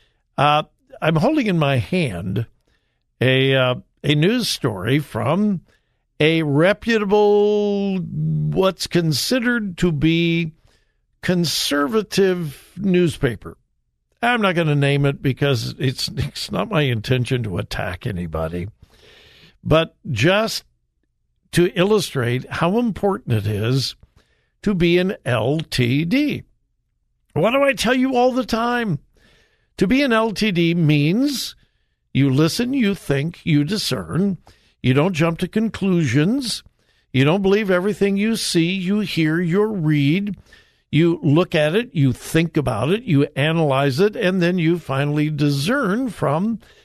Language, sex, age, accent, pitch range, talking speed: English, male, 60-79, American, 140-200 Hz, 125 wpm